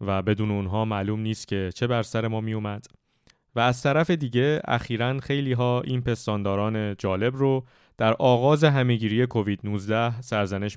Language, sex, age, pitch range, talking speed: Persian, male, 20-39, 105-140 Hz, 160 wpm